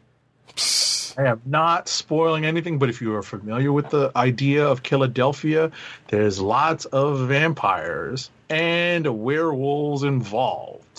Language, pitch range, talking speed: English, 120-155 Hz, 120 wpm